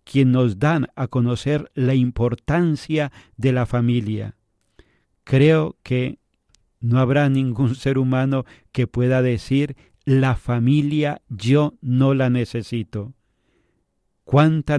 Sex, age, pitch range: male, 40-59, 120-140 Hz